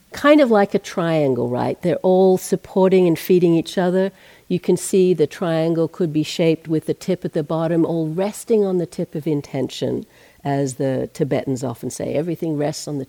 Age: 60-79